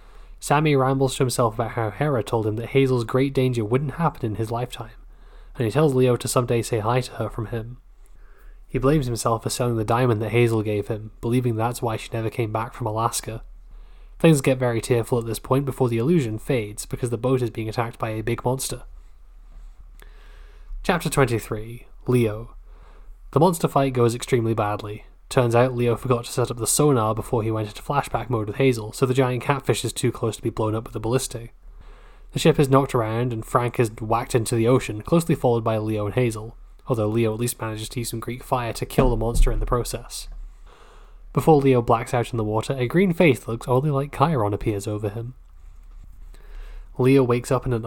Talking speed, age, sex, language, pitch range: 210 wpm, 20-39, male, English, 110-130 Hz